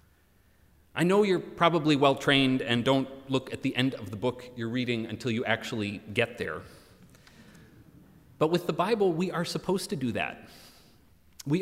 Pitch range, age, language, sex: 110-165 Hz, 30-49, English, male